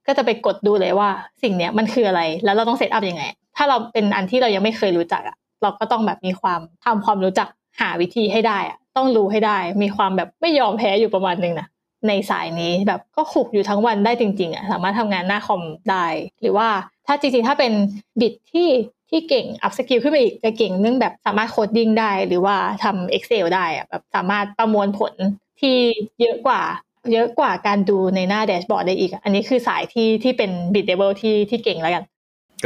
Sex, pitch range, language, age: female, 195-235 Hz, Thai, 20-39